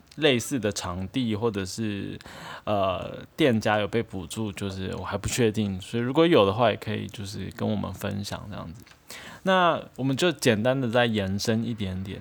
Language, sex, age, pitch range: Chinese, male, 20-39, 105-135 Hz